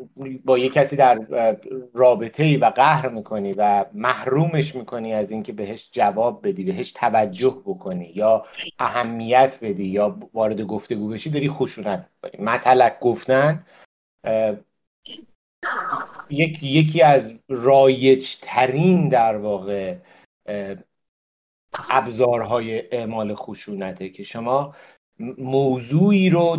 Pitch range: 110-140 Hz